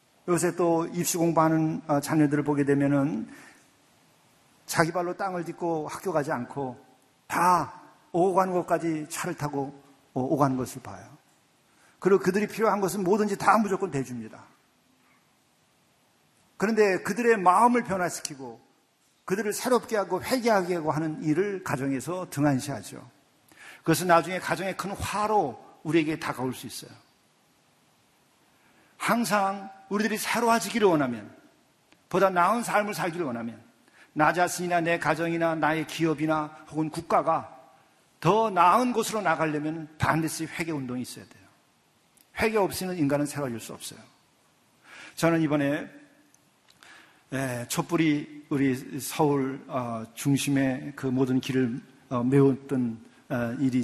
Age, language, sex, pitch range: 50-69, Korean, male, 135-185 Hz